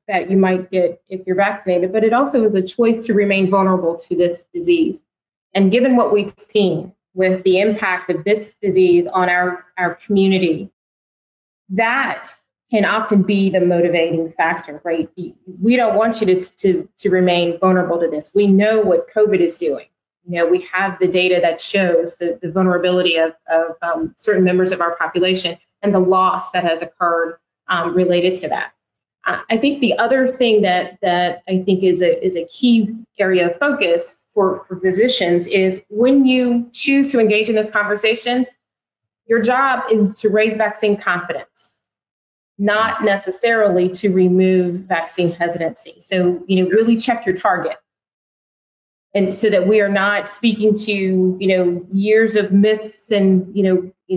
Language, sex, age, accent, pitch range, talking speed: English, female, 30-49, American, 180-215 Hz, 170 wpm